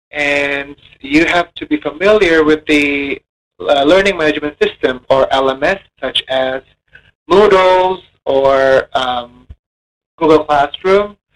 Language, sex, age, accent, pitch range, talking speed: Indonesian, male, 30-49, American, 130-160 Hz, 110 wpm